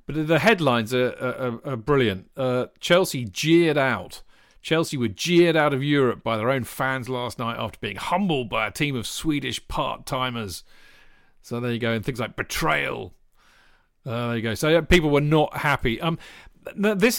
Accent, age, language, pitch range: British, 40-59, English, 120-150 Hz